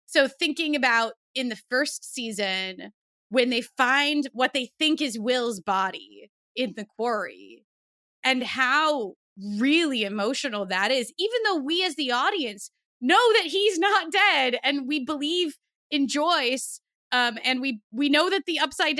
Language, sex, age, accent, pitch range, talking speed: English, female, 20-39, American, 205-290 Hz, 155 wpm